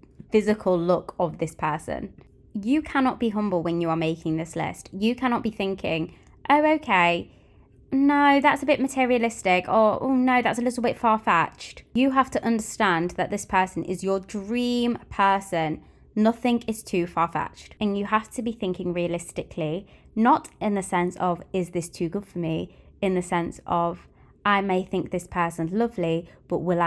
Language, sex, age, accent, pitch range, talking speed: English, female, 20-39, British, 175-220 Hz, 175 wpm